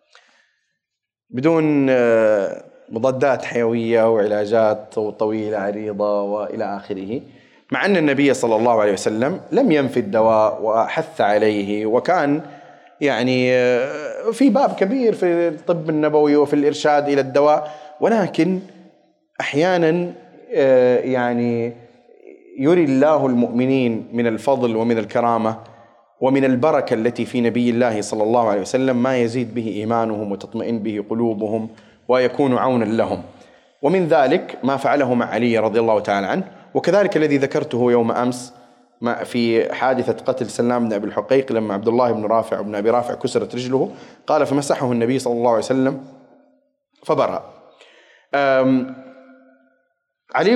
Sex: male